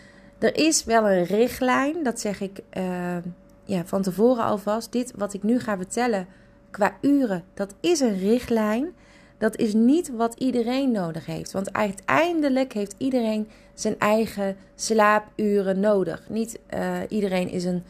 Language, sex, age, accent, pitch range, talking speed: Dutch, female, 30-49, Dutch, 180-230 Hz, 140 wpm